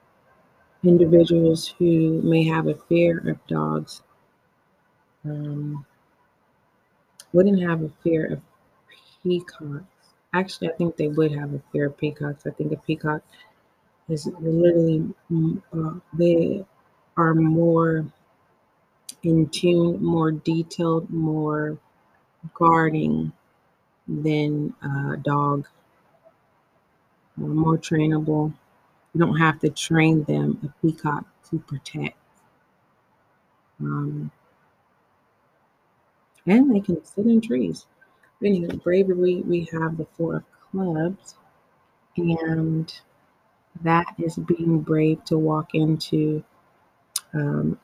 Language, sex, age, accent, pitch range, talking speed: English, female, 30-49, American, 155-170 Hz, 100 wpm